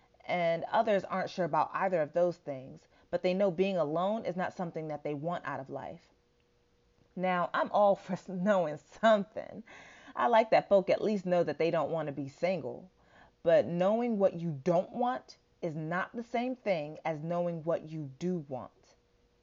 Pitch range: 160-195 Hz